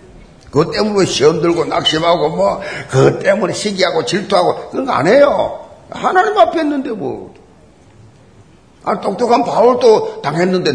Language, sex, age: Korean, male, 50-69